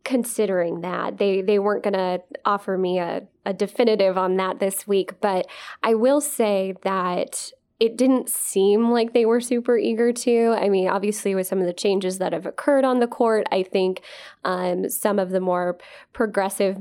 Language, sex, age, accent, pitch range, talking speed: English, female, 10-29, American, 180-215 Hz, 180 wpm